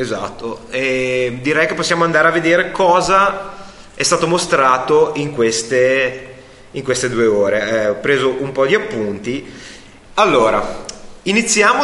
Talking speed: 130 wpm